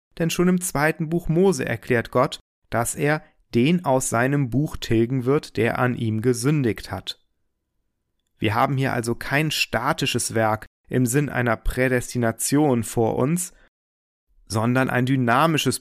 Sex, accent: male, German